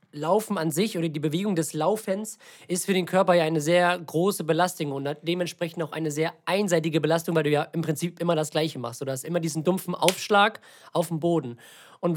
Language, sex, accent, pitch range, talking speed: German, male, German, 160-195 Hz, 210 wpm